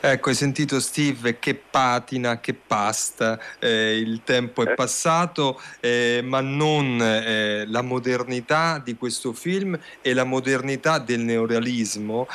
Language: Italian